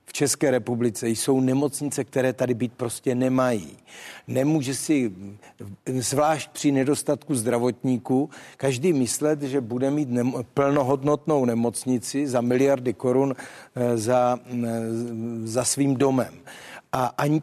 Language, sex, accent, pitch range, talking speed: Czech, male, native, 125-140 Hz, 105 wpm